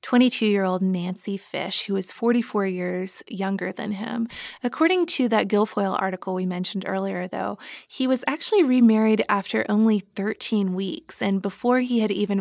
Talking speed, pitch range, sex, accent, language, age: 155 wpm, 190-230 Hz, female, American, English, 20-39